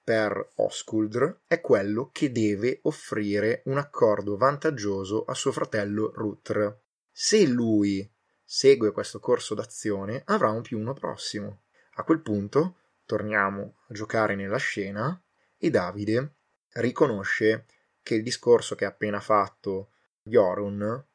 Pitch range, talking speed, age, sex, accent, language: 100-115 Hz, 125 wpm, 20-39, male, native, Italian